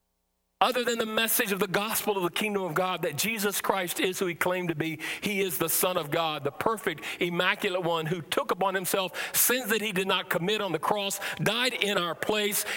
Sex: male